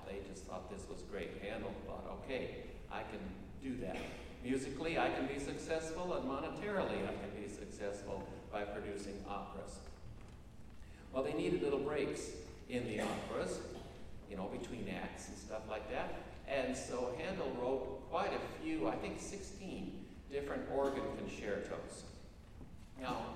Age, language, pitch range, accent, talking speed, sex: 60-79, English, 100-120 Hz, American, 145 wpm, male